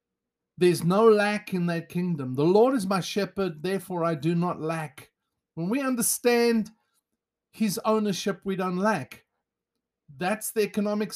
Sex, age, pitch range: male, 50-69, 175-230 Hz